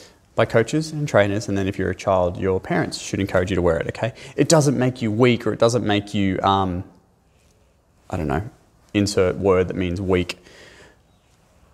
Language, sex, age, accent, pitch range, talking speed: English, male, 20-39, Australian, 100-125 Hz, 200 wpm